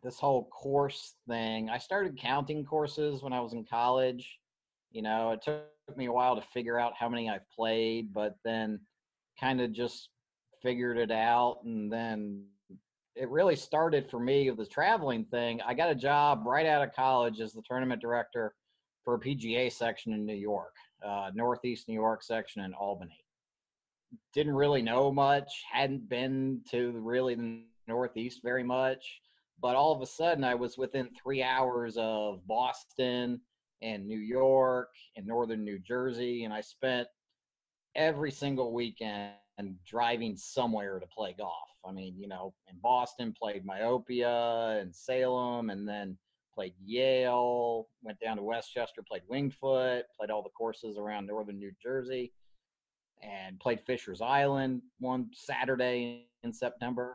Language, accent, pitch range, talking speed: English, American, 110-130 Hz, 160 wpm